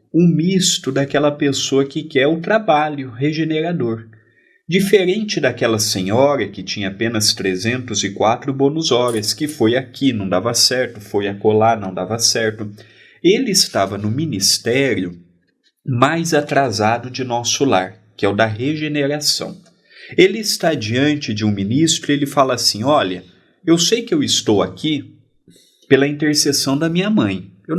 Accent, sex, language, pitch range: Brazilian, male, Portuguese, 110-150 Hz